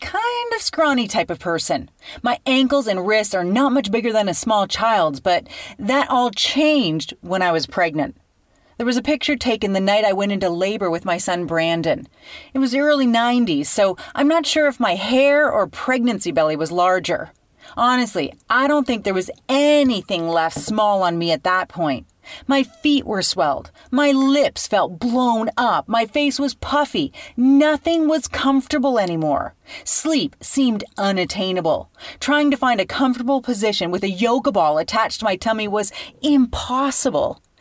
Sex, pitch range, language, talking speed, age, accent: female, 195-285 Hz, English, 170 wpm, 30-49, American